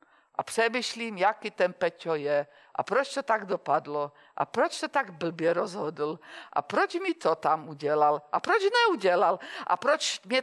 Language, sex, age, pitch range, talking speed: Czech, female, 50-69, 170-275 Hz, 165 wpm